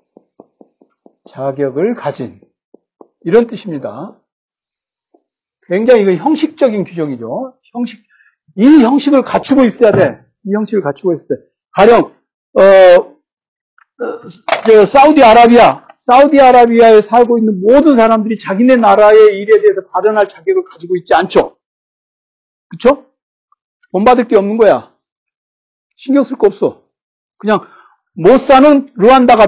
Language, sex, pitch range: Korean, male, 215-280 Hz